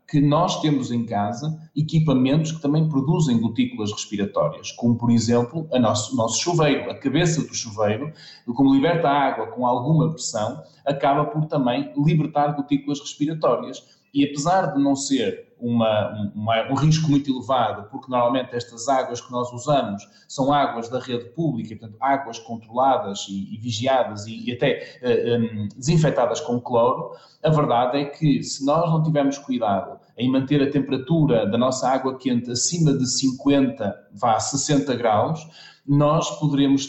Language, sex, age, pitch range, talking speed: Portuguese, male, 20-39, 120-150 Hz, 160 wpm